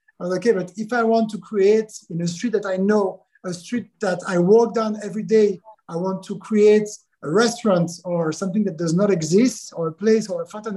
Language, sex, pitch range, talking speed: English, male, 190-225 Hz, 215 wpm